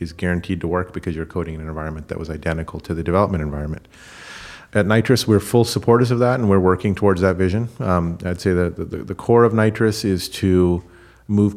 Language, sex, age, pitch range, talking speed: English, male, 40-59, 85-100 Hz, 220 wpm